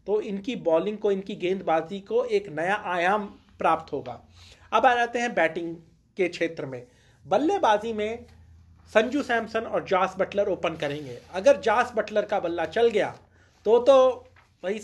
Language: Hindi